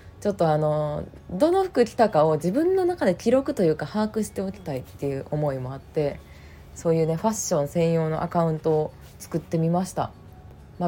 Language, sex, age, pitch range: Japanese, female, 20-39, 140-205 Hz